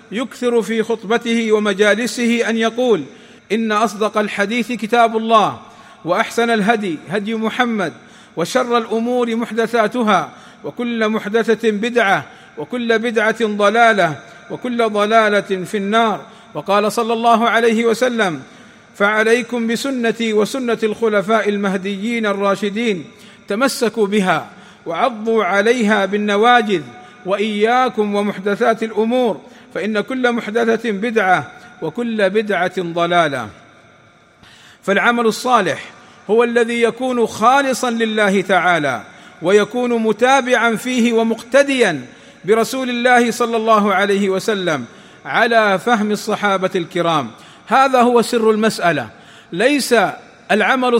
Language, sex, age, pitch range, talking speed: Arabic, male, 50-69, 205-240 Hz, 95 wpm